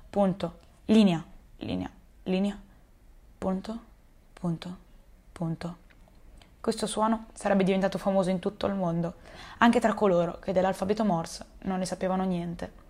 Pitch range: 180-215 Hz